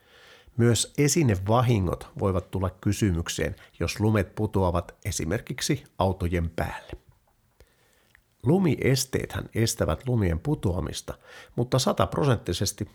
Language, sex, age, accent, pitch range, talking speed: Finnish, male, 50-69, native, 90-115 Hz, 80 wpm